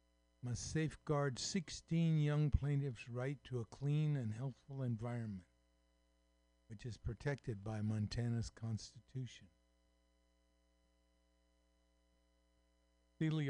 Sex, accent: male, American